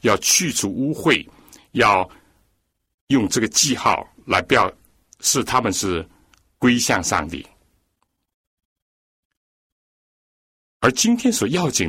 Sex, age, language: male, 60-79, Chinese